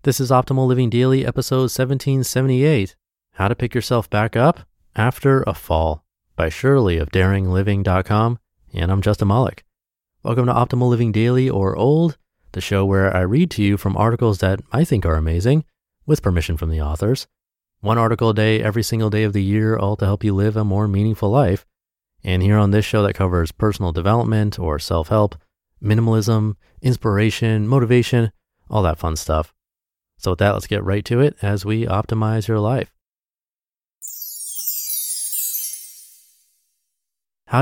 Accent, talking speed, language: American, 160 wpm, English